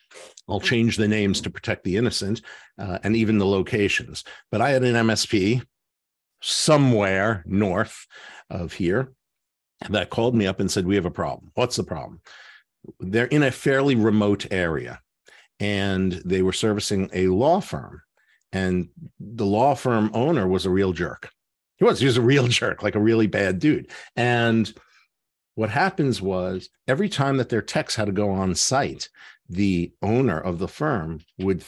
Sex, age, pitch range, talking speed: male, 50-69, 100-135 Hz, 170 wpm